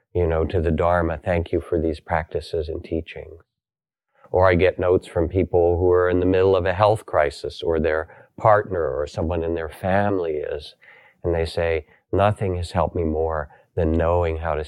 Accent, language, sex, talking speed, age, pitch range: American, English, male, 195 wpm, 40-59, 85-95 Hz